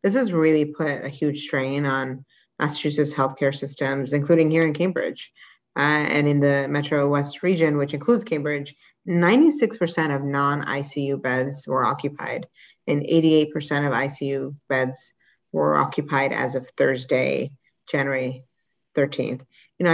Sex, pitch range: female, 140-160 Hz